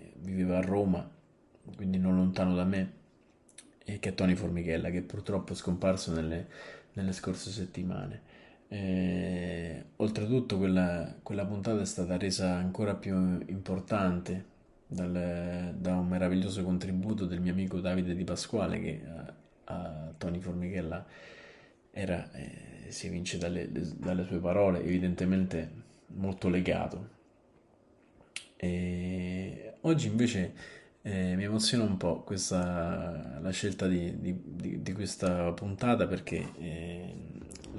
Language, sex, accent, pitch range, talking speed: Italian, male, native, 90-110 Hz, 120 wpm